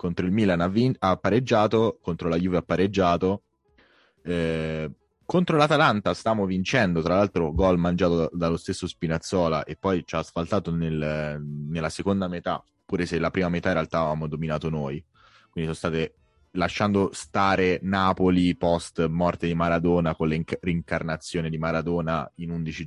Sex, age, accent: male, 20-39, native